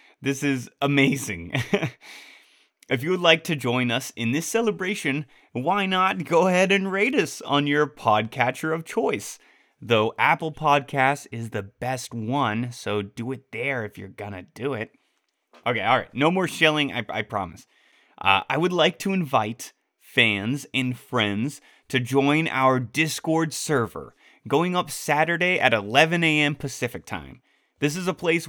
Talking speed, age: 160 wpm, 30-49